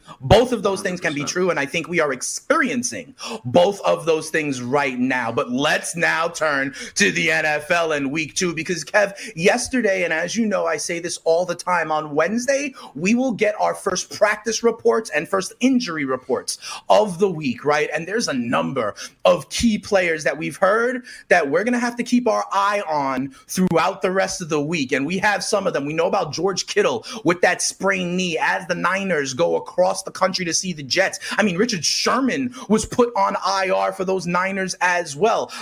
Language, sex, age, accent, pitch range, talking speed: English, male, 30-49, American, 160-220 Hz, 210 wpm